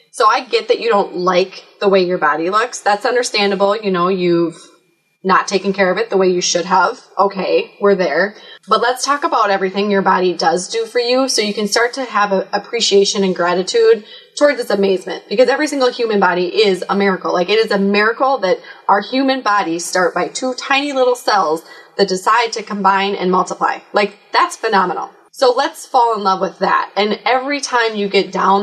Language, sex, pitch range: English, female, 190-255 Hz